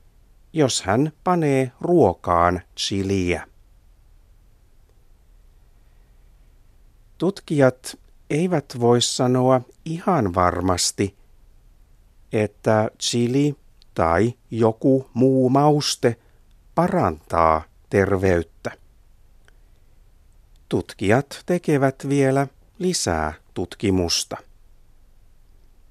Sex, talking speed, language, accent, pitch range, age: male, 55 wpm, Finnish, native, 90-135 Hz, 50-69